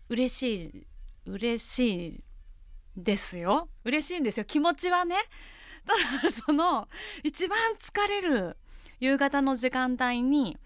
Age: 20-39